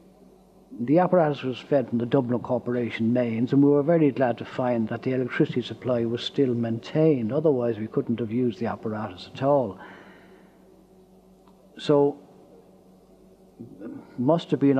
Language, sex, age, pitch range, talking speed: English, male, 60-79, 115-140 Hz, 145 wpm